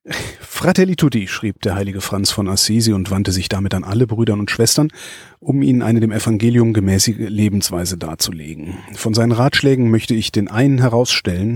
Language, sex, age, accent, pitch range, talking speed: German, male, 40-59, German, 110-150 Hz, 170 wpm